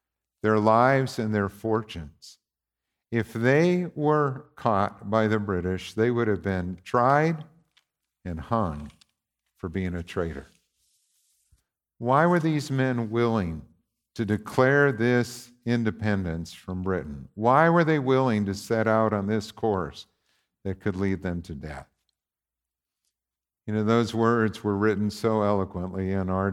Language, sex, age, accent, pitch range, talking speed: English, male, 50-69, American, 95-120 Hz, 135 wpm